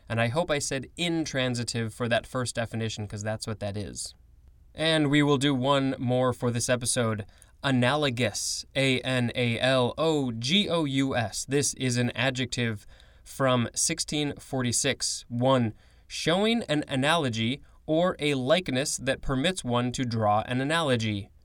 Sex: male